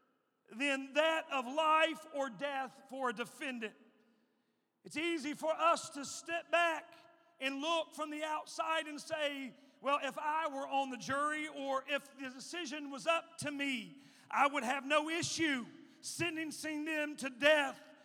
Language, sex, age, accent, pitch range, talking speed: English, male, 40-59, American, 270-325 Hz, 155 wpm